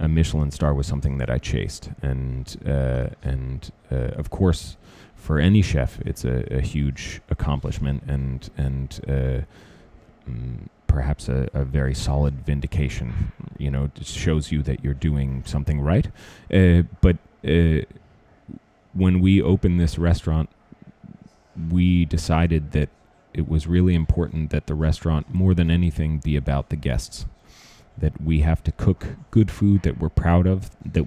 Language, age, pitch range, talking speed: Danish, 30-49, 70-85 Hz, 155 wpm